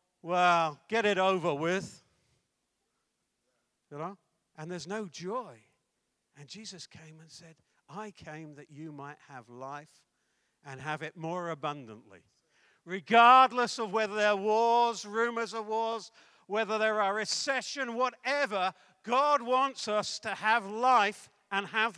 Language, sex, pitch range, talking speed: English, male, 145-195 Hz, 135 wpm